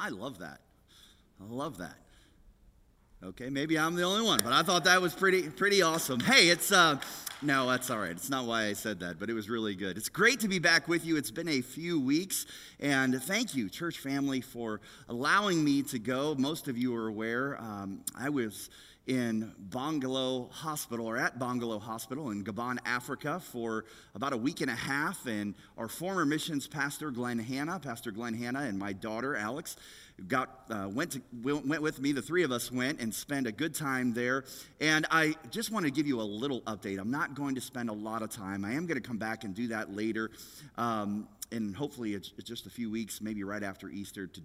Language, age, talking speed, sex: English, 30-49, 215 wpm, male